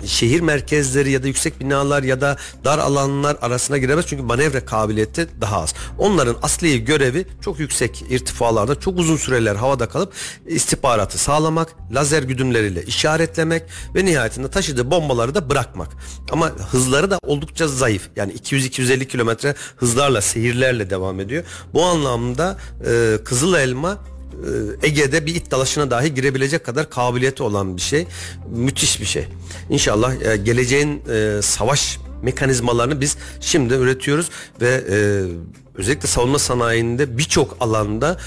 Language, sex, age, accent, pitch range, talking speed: Turkish, male, 40-59, native, 110-145 Hz, 130 wpm